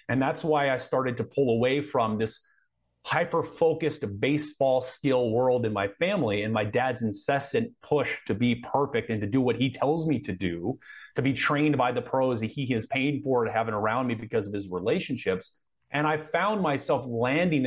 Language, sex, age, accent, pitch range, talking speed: English, male, 30-49, American, 110-150 Hz, 195 wpm